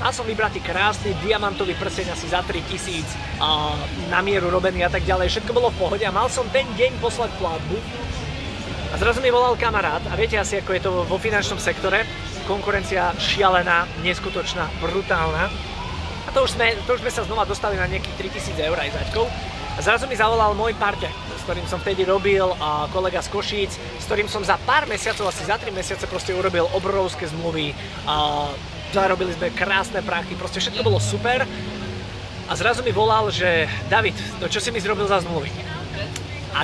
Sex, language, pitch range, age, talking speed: male, Slovak, 155-215 Hz, 20-39, 185 wpm